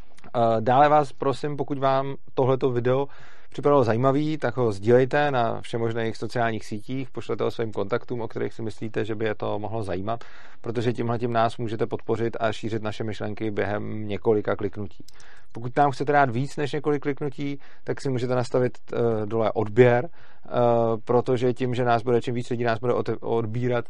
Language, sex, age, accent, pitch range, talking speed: Czech, male, 40-59, native, 110-125 Hz, 170 wpm